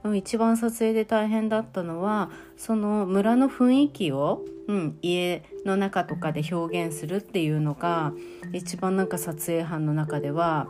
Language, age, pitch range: Japanese, 30-49, 155-215 Hz